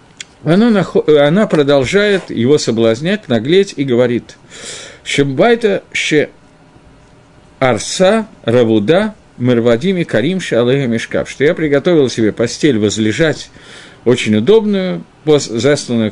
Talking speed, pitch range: 60 wpm, 120-175 Hz